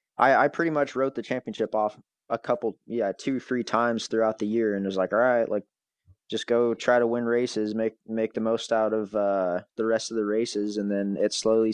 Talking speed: 235 wpm